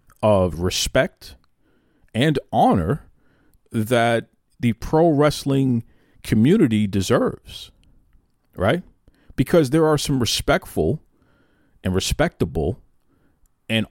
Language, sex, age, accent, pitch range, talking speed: English, male, 50-69, American, 100-140 Hz, 80 wpm